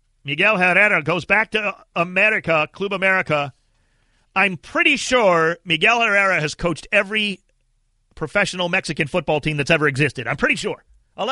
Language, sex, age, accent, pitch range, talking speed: English, male, 40-59, American, 125-200 Hz, 145 wpm